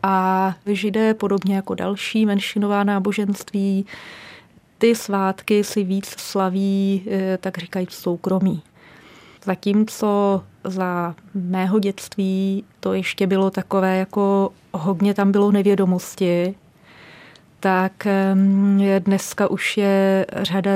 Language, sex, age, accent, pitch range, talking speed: Czech, female, 30-49, native, 180-195 Hz, 100 wpm